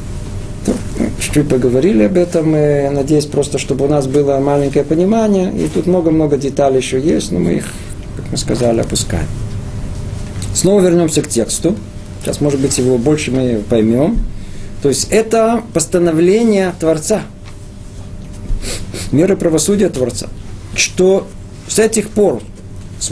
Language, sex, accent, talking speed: Russian, male, native, 130 wpm